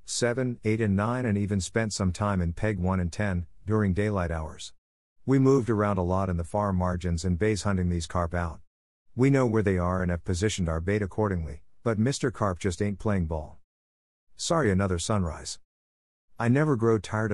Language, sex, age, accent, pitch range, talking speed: English, male, 50-69, American, 85-110 Hz, 195 wpm